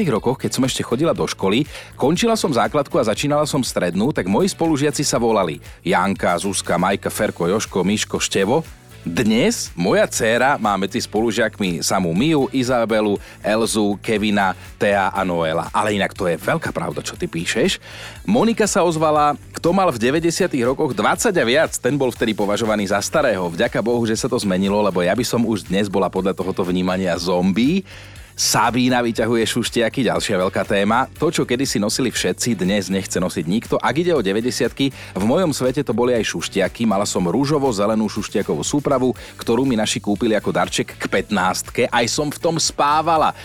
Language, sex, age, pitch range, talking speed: Slovak, male, 40-59, 95-130 Hz, 175 wpm